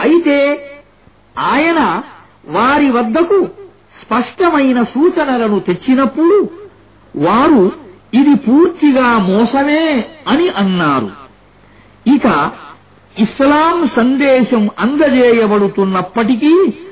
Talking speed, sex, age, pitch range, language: 80 wpm, male, 50-69, 215-295 Hz, Arabic